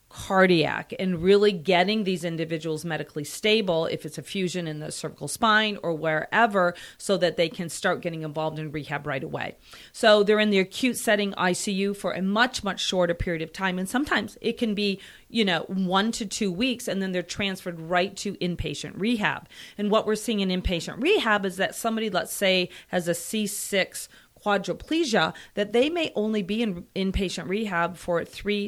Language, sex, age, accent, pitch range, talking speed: English, female, 40-59, American, 175-210 Hz, 185 wpm